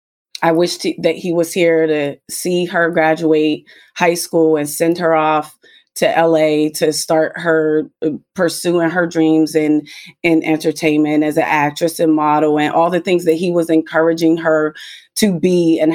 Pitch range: 155-180 Hz